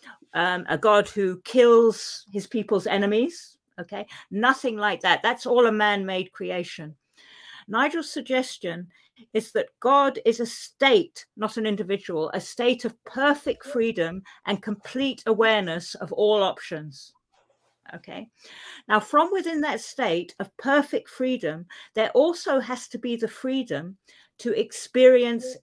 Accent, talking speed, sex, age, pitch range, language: British, 135 wpm, female, 50-69, 200-255 Hz, English